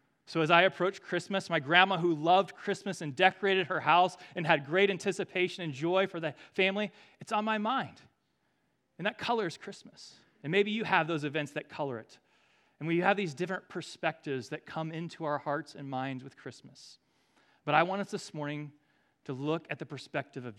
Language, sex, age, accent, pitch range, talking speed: English, male, 30-49, American, 145-190 Hz, 195 wpm